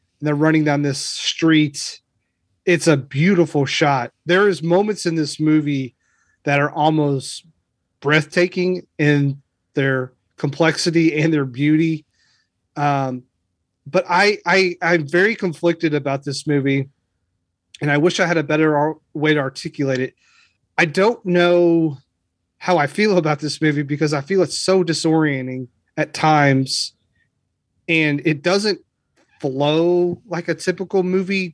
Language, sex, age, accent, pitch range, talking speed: English, male, 30-49, American, 140-170 Hz, 135 wpm